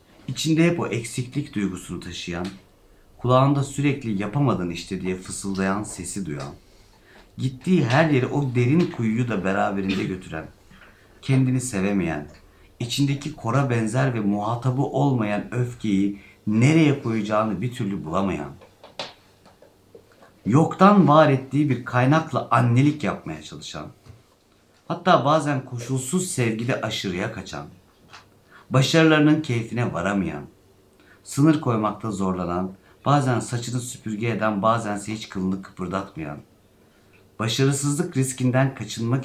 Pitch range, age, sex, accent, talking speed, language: 100-130 Hz, 50-69, male, native, 100 wpm, Turkish